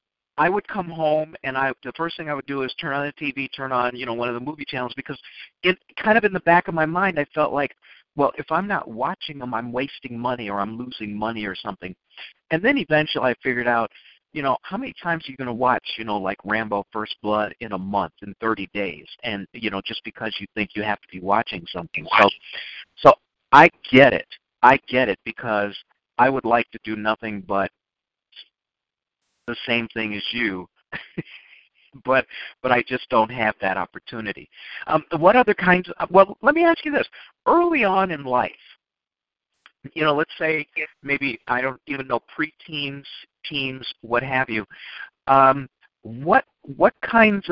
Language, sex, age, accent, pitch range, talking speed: English, male, 50-69, American, 110-155 Hz, 200 wpm